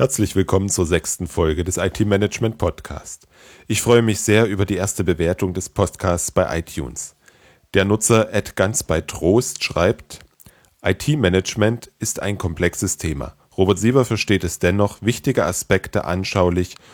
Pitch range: 85-110 Hz